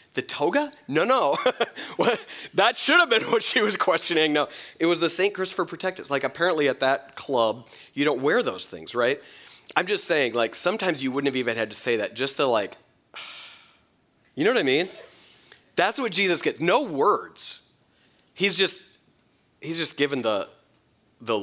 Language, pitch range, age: English, 115-165 Hz, 30-49